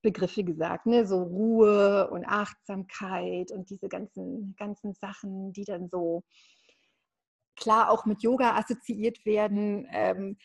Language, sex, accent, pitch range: German, female, German, 200-235 Hz